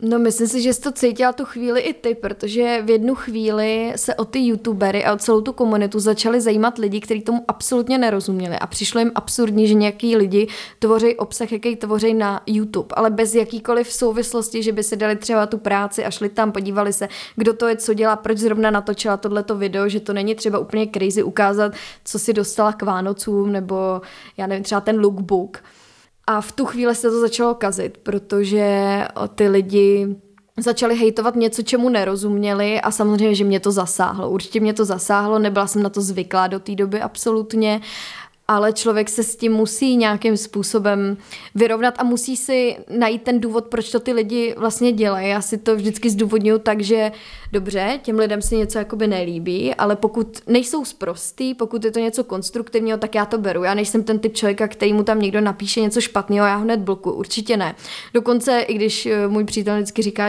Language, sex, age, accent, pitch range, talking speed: Czech, female, 20-39, native, 205-230 Hz, 195 wpm